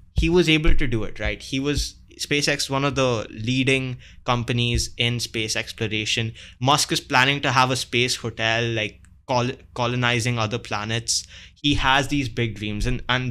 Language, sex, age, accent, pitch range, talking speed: English, male, 20-39, Indian, 105-130 Hz, 170 wpm